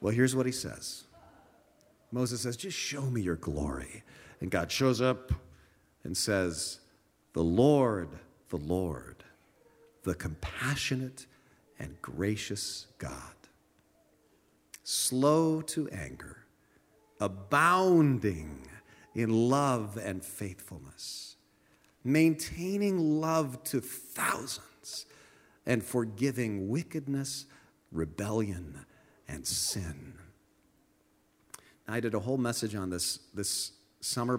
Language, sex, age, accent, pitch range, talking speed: English, male, 50-69, American, 95-135 Hz, 95 wpm